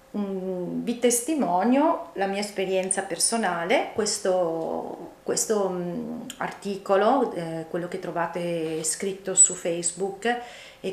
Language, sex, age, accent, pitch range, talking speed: Italian, female, 30-49, native, 180-230 Hz, 95 wpm